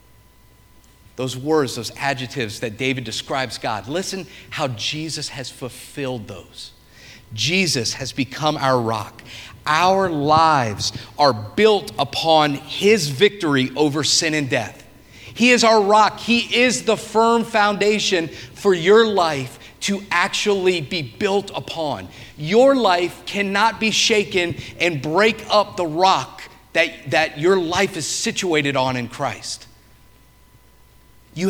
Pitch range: 130-215 Hz